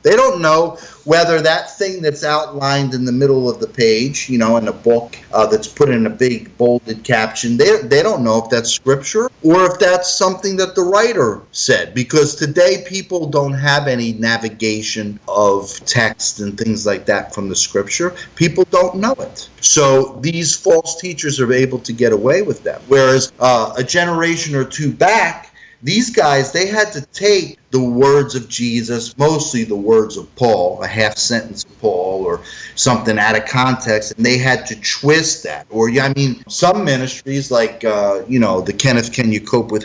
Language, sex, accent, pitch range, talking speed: English, male, American, 115-170 Hz, 190 wpm